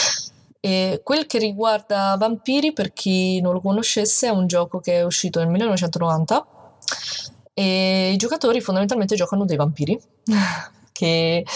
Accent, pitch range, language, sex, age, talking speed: native, 160-200 Hz, Italian, female, 20-39, 130 wpm